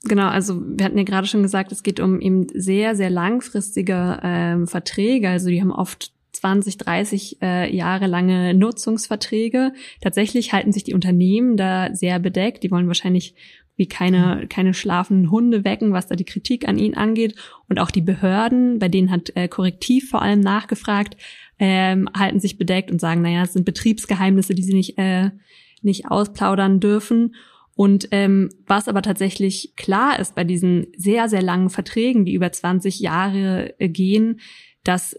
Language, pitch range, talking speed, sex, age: German, 185-210 Hz, 170 wpm, female, 20-39